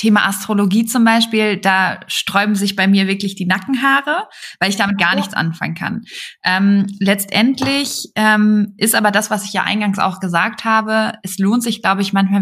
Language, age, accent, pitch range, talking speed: German, 20-39, German, 185-220 Hz, 185 wpm